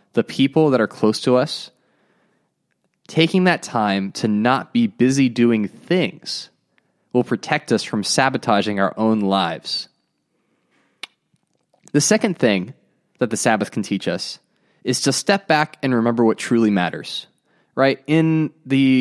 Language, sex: English, male